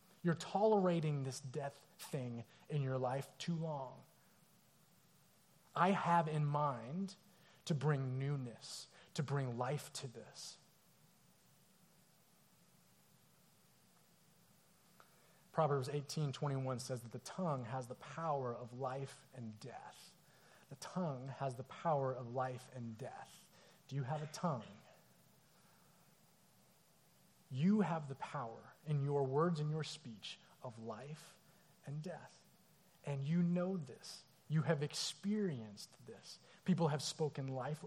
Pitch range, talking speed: 135-175 Hz, 120 wpm